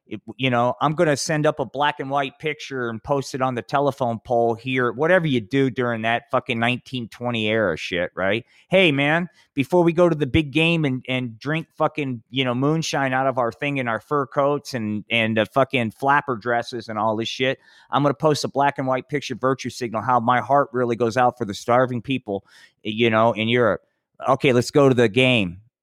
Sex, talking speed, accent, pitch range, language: male, 225 wpm, American, 120-150 Hz, English